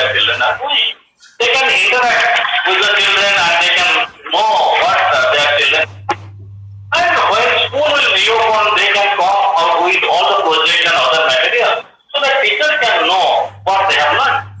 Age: 50-69